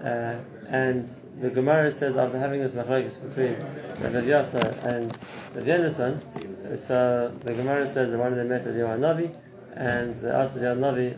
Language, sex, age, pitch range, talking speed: English, male, 20-39, 120-140 Hz, 155 wpm